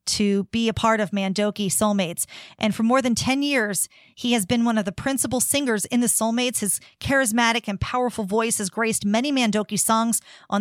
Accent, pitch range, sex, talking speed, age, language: American, 205-245 Hz, female, 200 wpm, 40-59, English